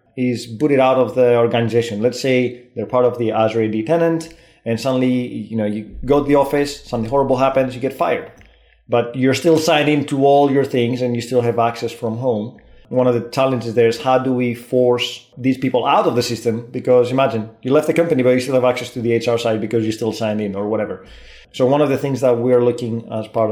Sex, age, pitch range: male, 30-49, 115-125 Hz